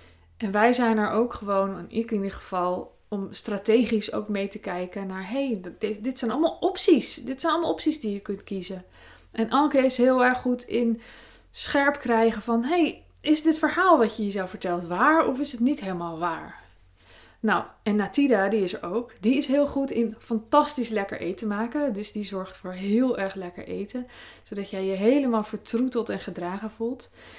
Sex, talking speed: female, 195 wpm